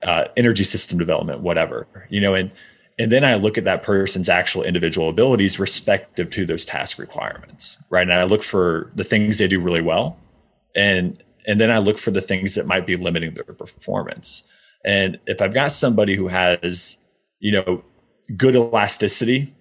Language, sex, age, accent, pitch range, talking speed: English, male, 30-49, American, 90-105 Hz, 180 wpm